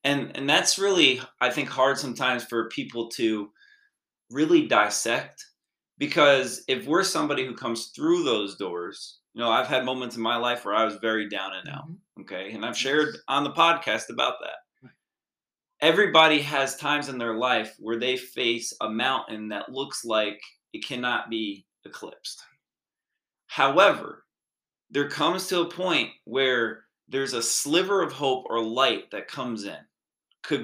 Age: 20-39